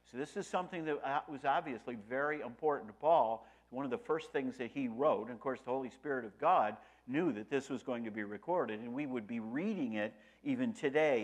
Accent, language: American, English